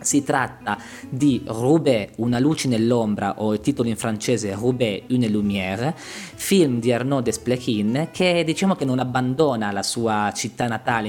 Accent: native